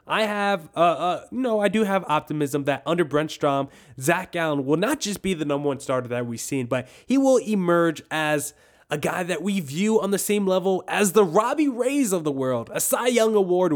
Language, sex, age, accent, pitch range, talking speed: English, male, 20-39, American, 130-175 Hz, 220 wpm